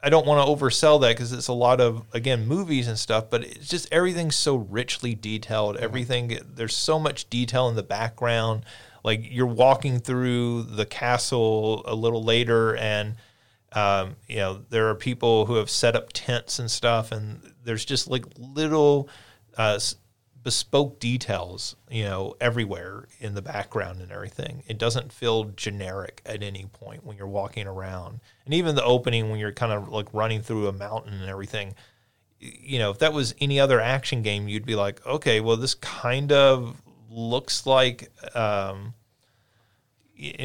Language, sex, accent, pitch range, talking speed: English, male, American, 110-125 Hz, 170 wpm